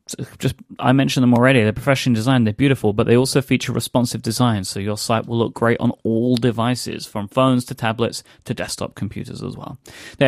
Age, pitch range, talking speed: 30-49, 115-150 Hz, 210 wpm